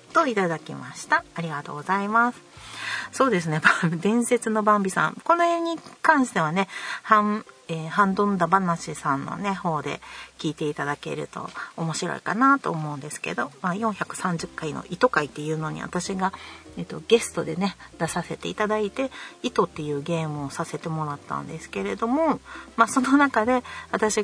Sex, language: female, Japanese